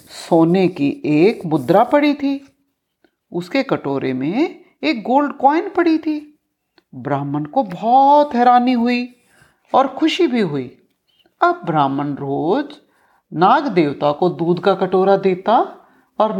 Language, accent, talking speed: Hindi, native, 125 wpm